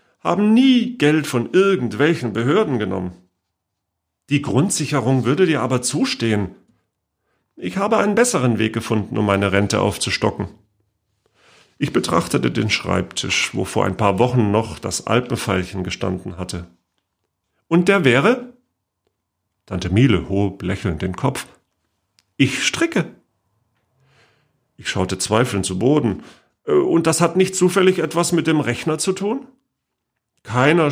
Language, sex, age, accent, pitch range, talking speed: German, male, 40-59, German, 95-150 Hz, 125 wpm